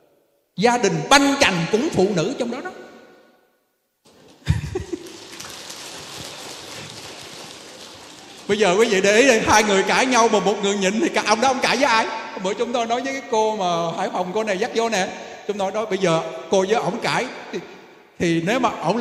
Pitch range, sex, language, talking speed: 180-245 Hz, male, Vietnamese, 195 wpm